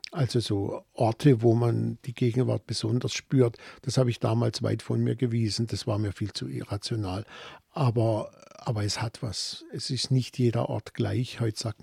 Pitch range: 110-125 Hz